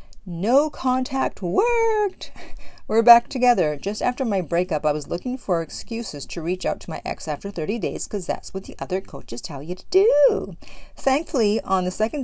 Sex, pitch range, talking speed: female, 160-210 Hz, 185 wpm